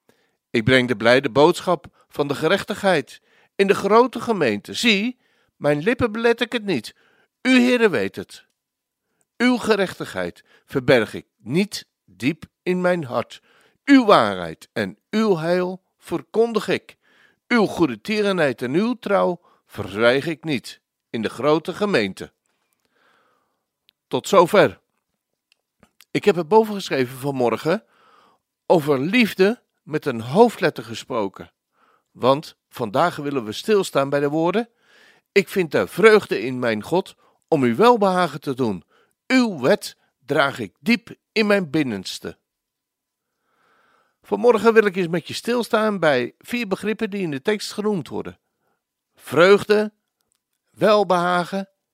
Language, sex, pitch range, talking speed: Dutch, male, 145-220 Hz, 130 wpm